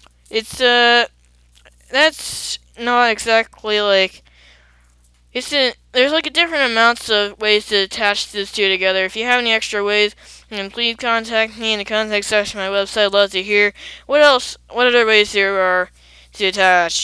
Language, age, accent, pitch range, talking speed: English, 10-29, American, 195-240 Hz, 175 wpm